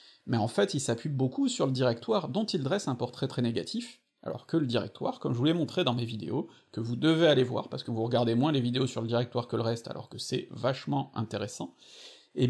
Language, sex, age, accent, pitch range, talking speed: French, male, 40-59, French, 120-160 Hz, 250 wpm